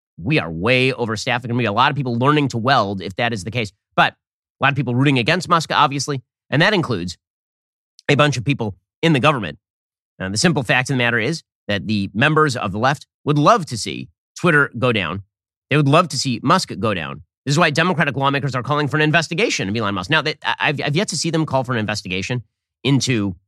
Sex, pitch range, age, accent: male, 110-150 Hz, 30-49, American